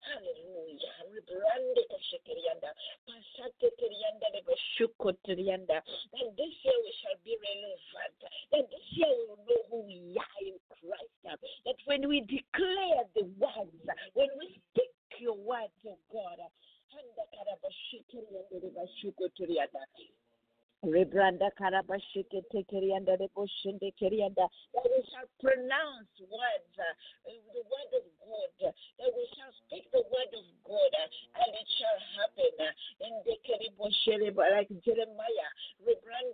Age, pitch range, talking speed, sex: 50-69, 200-335 Hz, 125 wpm, female